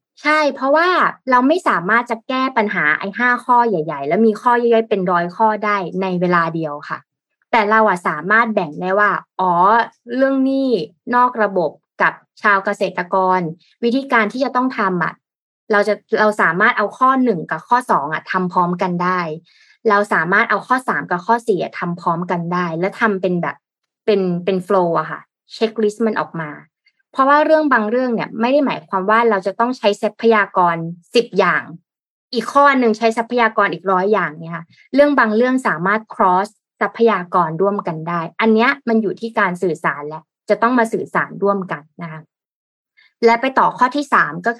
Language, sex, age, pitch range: Thai, female, 20-39, 180-235 Hz